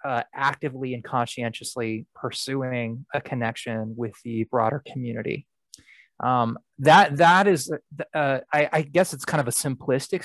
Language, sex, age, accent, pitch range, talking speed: English, male, 20-39, American, 120-145 Hz, 145 wpm